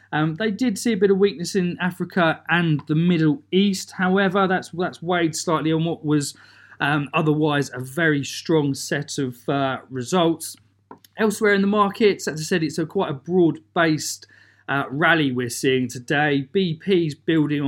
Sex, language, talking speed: male, English, 170 wpm